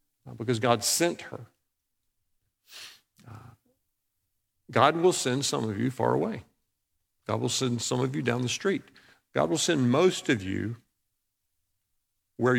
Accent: American